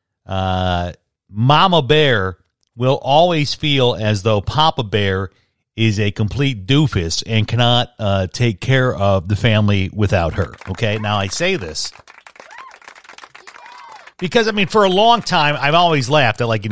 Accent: American